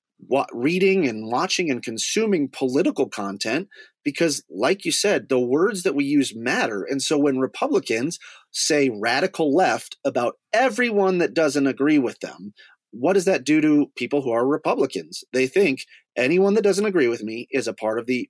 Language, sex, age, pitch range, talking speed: English, male, 30-49, 120-185 Hz, 175 wpm